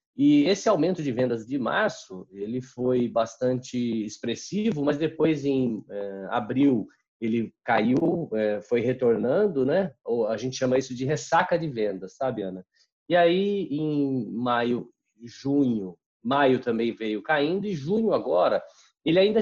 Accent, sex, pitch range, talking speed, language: Brazilian, male, 115-150 Hz, 135 wpm, Portuguese